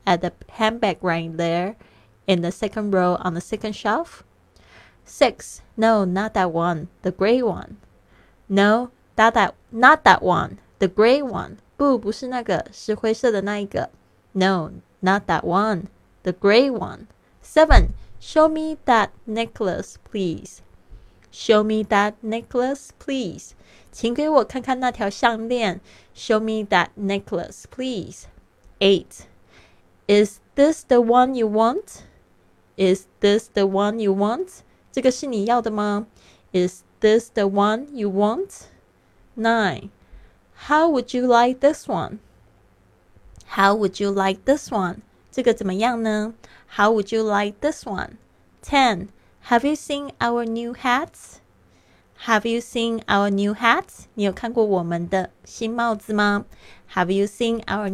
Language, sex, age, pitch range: Chinese, female, 20-39, 190-235 Hz